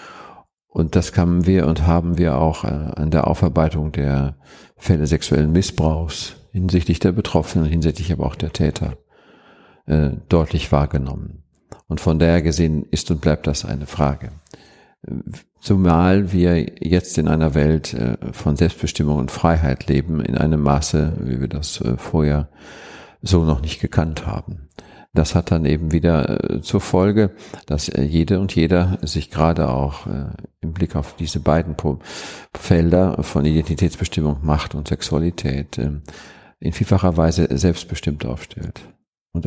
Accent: German